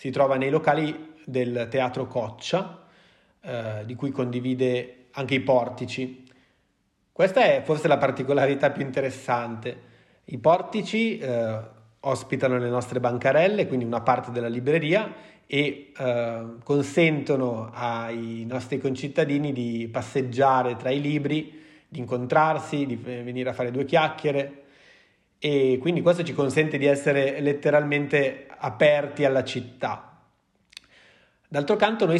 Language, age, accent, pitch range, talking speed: Italian, 30-49, native, 125-145 Hz, 125 wpm